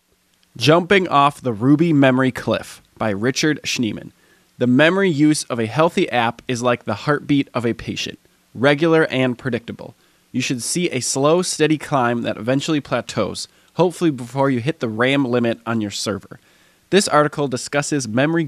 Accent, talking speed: American, 160 wpm